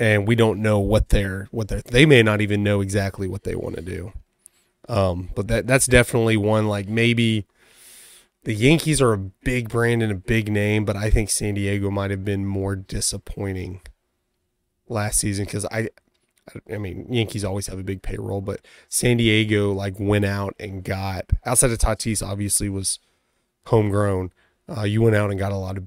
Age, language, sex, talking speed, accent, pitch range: 20-39, English, male, 195 wpm, American, 95-110 Hz